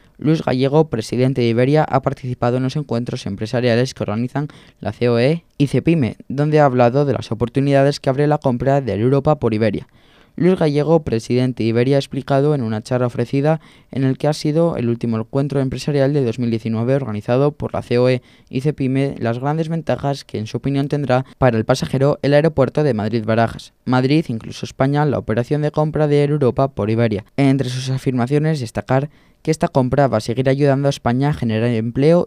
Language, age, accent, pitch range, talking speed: Spanish, 20-39, Spanish, 120-145 Hz, 190 wpm